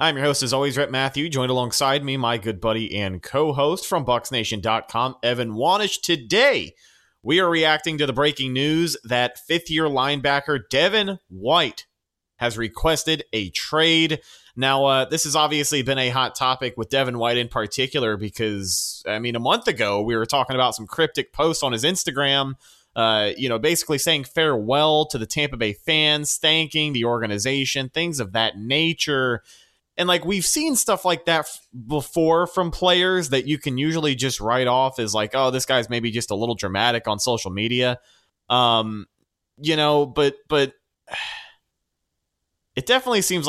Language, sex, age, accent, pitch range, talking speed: English, male, 30-49, American, 115-155 Hz, 170 wpm